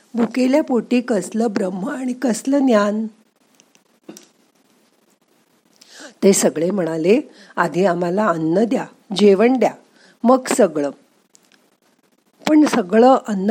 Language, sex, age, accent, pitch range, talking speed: Marathi, female, 50-69, native, 185-245 Hz, 95 wpm